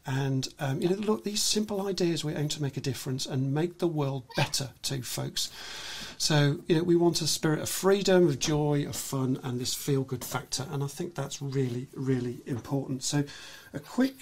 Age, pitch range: 40-59, 145-185 Hz